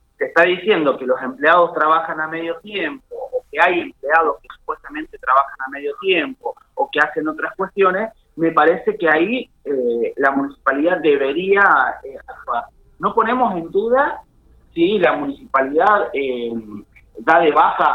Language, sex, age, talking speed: Spanish, male, 30-49, 150 wpm